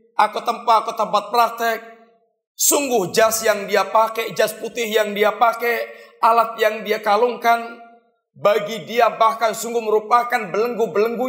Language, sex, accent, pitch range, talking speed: Indonesian, male, native, 190-235 Hz, 135 wpm